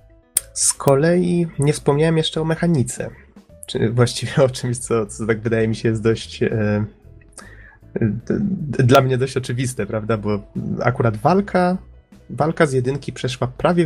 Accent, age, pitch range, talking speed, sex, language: native, 30-49, 110-135 Hz, 160 wpm, male, Polish